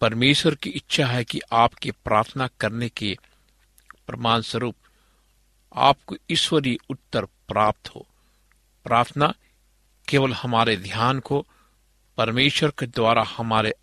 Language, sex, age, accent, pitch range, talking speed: Hindi, male, 60-79, native, 115-140 Hz, 110 wpm